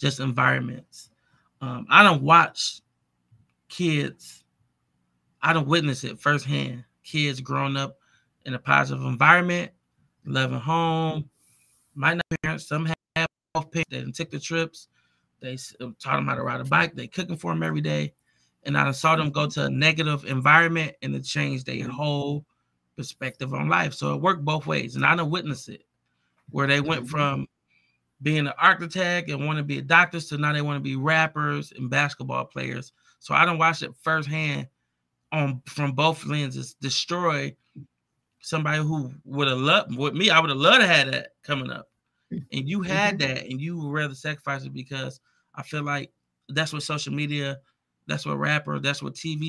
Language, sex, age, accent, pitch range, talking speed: English, male, 20-39, American, 105-155 Hz, 175 wpm